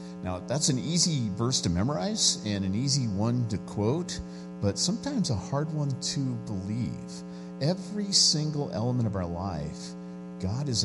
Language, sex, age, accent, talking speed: English, male, 50-69, American, 155 wpm